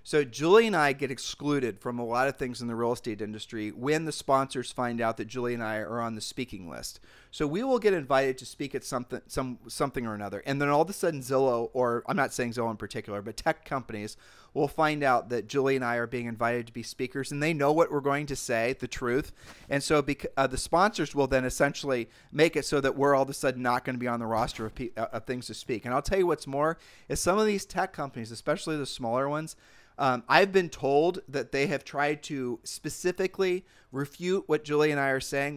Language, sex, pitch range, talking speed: English, male, 125-150 Hz, 245 wpm